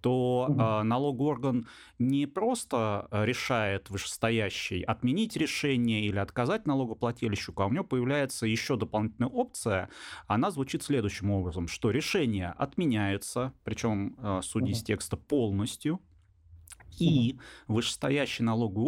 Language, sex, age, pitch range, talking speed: Russian, male, 30-49, 100-130 Hz, 100 wpm